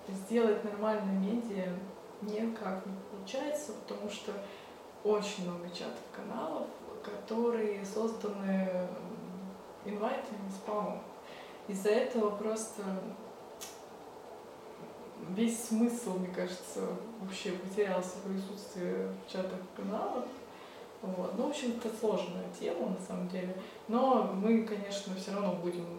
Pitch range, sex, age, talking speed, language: 190-225 Hz, female, 20-39, 95 wpm, Russian